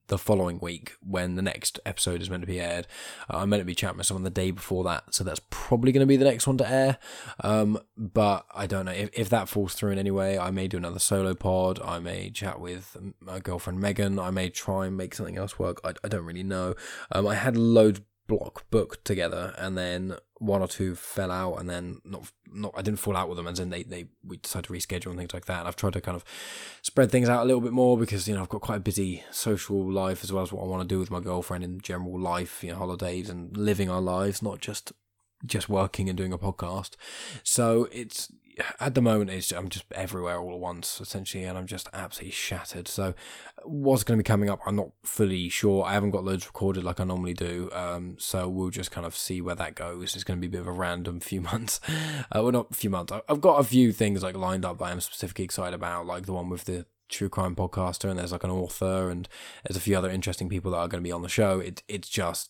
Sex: male